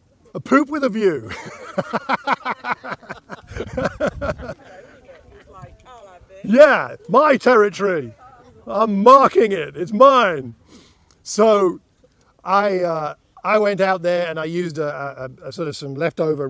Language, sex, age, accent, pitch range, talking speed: English, male, 50-69, British, 170-255 Hz, 110 wpm